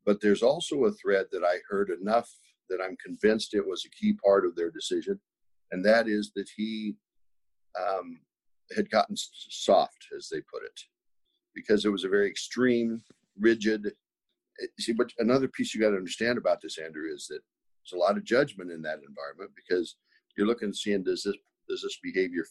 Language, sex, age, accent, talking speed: English, male, 60-79, American, 185 wpm